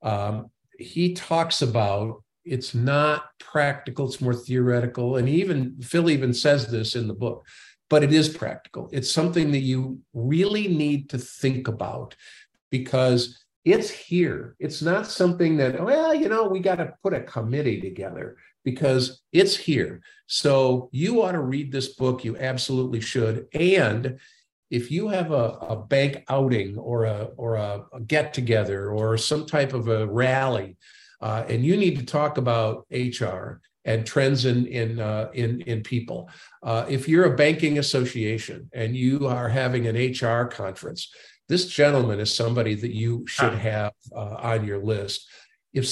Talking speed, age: 165 wpm, 50-69